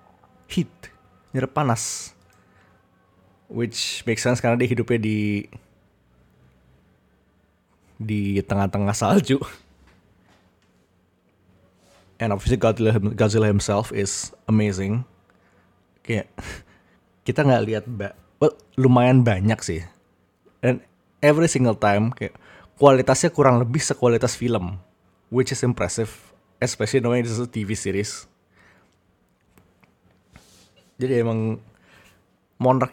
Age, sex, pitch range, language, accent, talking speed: 20-39, male, 100-125 Hz, Indonesian, native, 90 wpm